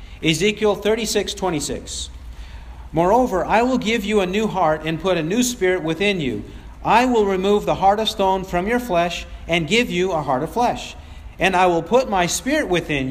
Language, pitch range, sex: English, 150-210 Hz, male